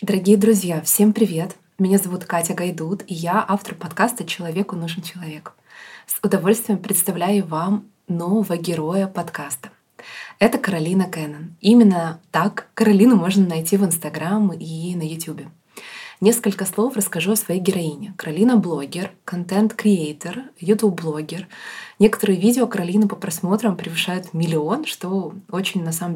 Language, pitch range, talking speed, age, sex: Russian, 165-205 Hz, 135 wpm, 20-39, female